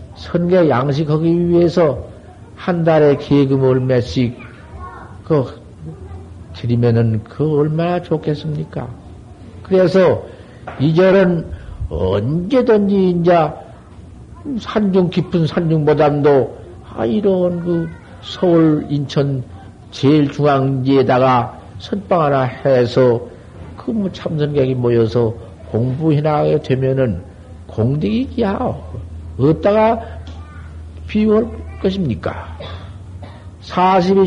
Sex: male